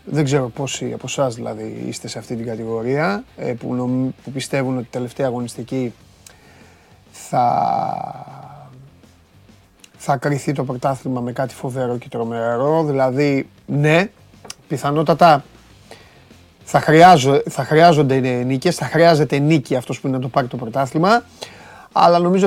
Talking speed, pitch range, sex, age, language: 125 wpm, 125-160 Hz, male, 30-49, Greek